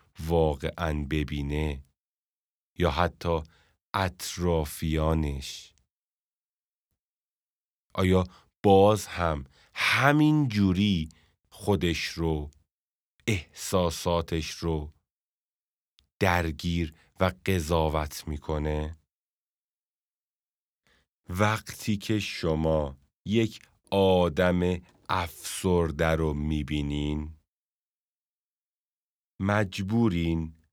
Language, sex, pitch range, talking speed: Persian, male, 80-100 Hz, 55 wpm